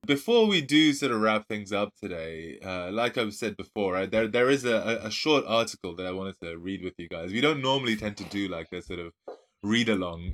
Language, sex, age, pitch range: English, male, 20-39, 95-120 Hz